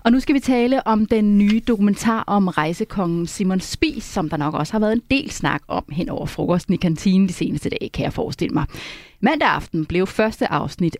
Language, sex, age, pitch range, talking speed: Danish, female, 30-49, 160-220 Hz, 220 wpm